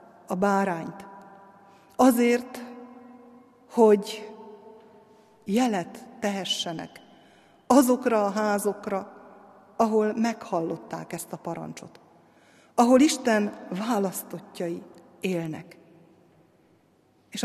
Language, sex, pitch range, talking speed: Hungarian, female, 195-245 Hz, 65 wpm